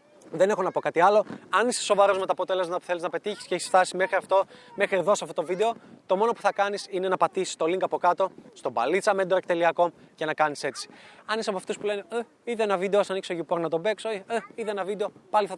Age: 20-39